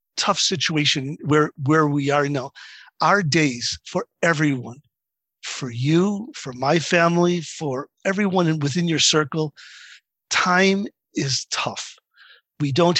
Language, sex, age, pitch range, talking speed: English, male, 50-69, 145-175 Hz, 120 wpm